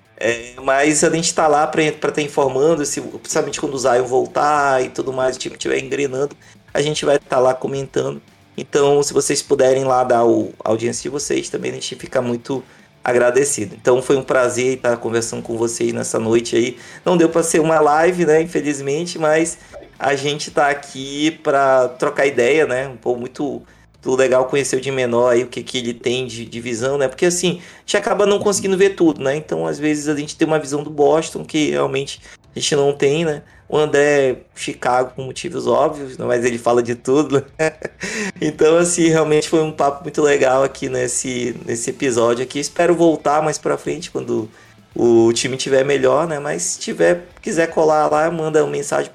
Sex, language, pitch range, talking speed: male, Portuguese, 125-155 Hz, 205 wpm